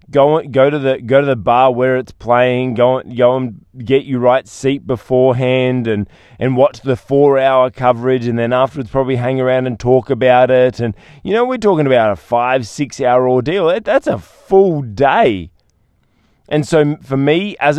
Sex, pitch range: male, 120-140 Hz